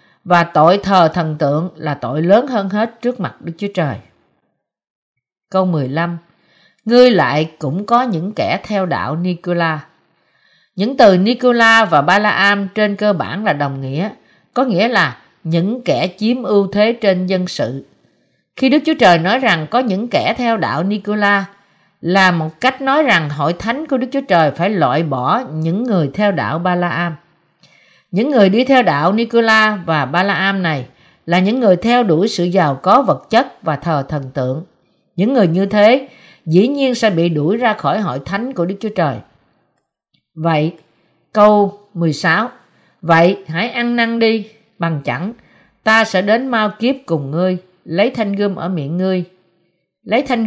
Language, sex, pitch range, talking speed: Vietnamese, female, 165-220 Hz, 170 wpm